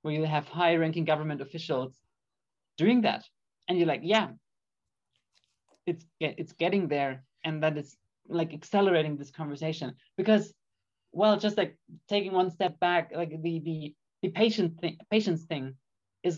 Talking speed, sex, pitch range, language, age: 145 wpm, male, 150-180 Hz, English, 30-49